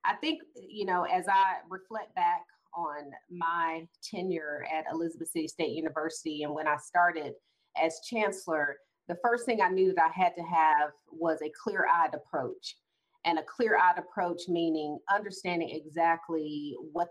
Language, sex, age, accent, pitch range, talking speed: English, female, 30-49, American, 155-180 Hz, 155 wpm